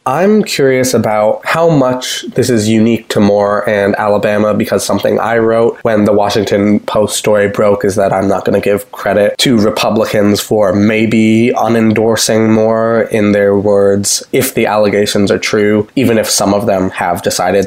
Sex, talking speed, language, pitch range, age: male, 175 wpm, English, 105-125 Hz, 20-39